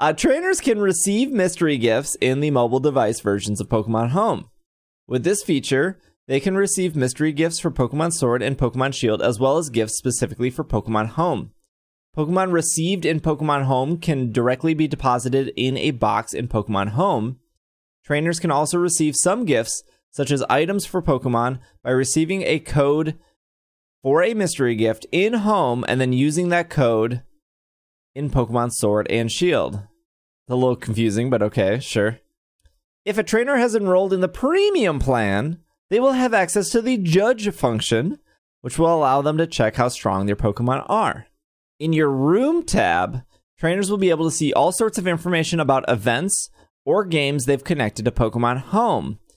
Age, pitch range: 20-39, 120-175 Hz